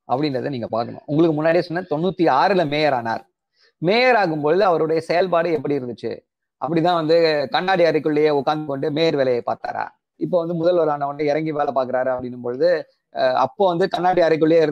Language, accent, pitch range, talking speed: Tamil, native, 160-240 Hz, 155 wpm